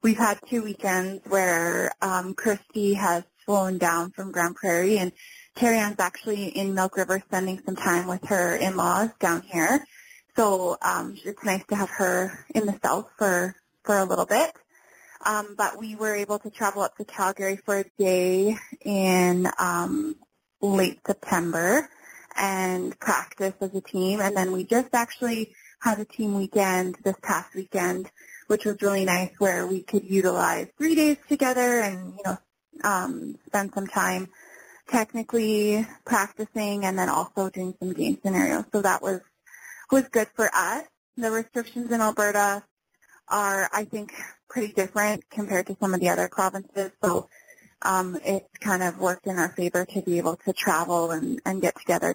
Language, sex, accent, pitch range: English, female, American, 190-225 Hz